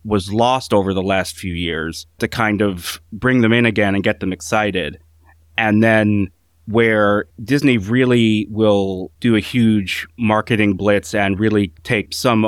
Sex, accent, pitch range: male, American, 90-115 Hz